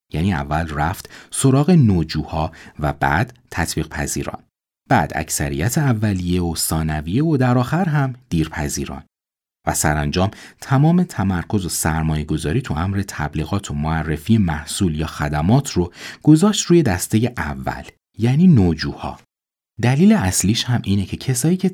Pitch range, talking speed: 75-120 Hz, 135 wpm